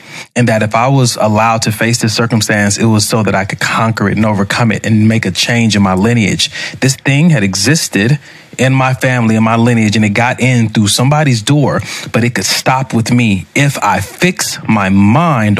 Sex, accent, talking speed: male, American, 215 wpm